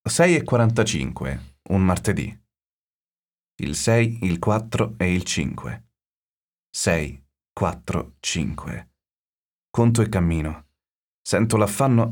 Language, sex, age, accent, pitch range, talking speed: Italian, male, 30-49, native, 80-110 Hz, 100 wpm